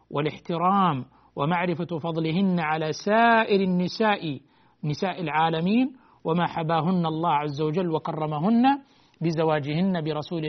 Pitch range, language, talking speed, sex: 145-170 Hz, Arabic, 90 wpm, male